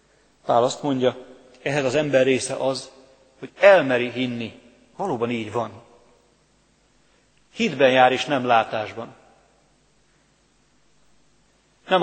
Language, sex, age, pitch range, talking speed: Hungarian, male, 30-49, 120-140 Hz, 100 wpm